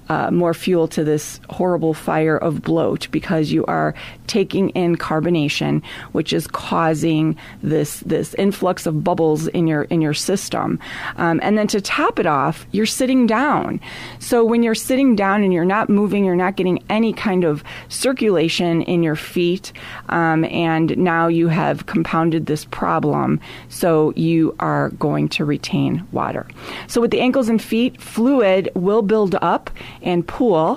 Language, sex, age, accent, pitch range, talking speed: English, female, 30-49, American, 165-215 Hz, 165 wpm